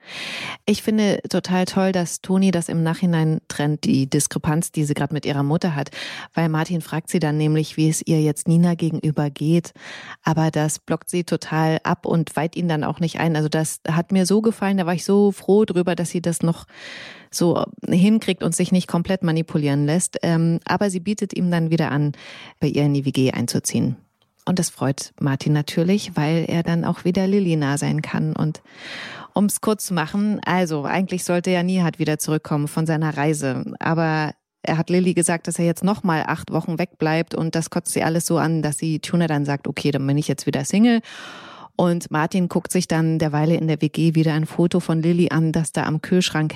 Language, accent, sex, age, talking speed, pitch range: German, German, female, 30-49, 210 wpm, 150-180 Hz